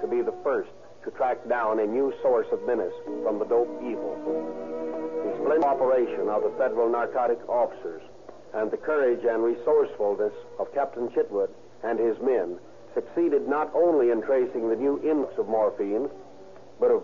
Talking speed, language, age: 165 wpm, English, 60-79